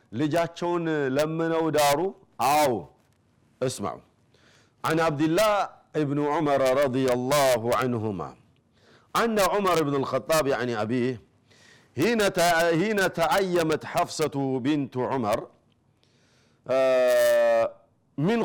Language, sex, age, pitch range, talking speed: Amharic, male, 50-69, 135-190 Hz, 90 wpm